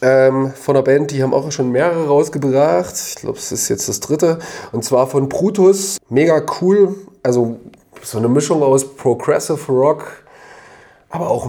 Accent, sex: German, male